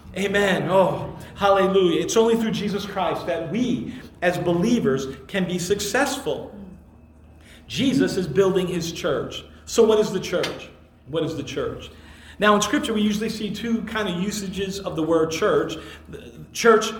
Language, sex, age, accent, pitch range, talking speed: English, male, 40-59, American, 185-230 Hz, 155 wpm